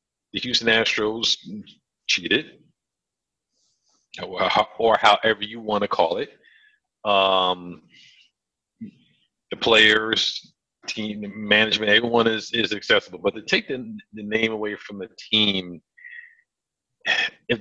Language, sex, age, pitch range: English, male, 50-69, 100-140 Hz